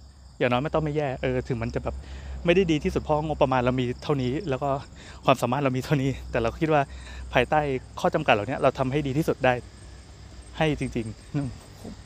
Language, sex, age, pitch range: Thai, male, 20-39, 120-160 Hz